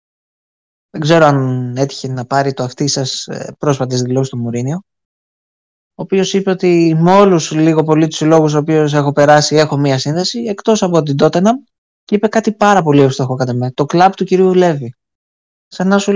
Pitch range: 135-185 Hz